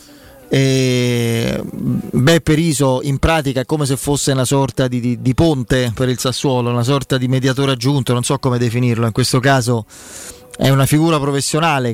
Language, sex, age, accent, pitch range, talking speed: Italian, male, 30-49, native, 130-150 Hz, 170 wpm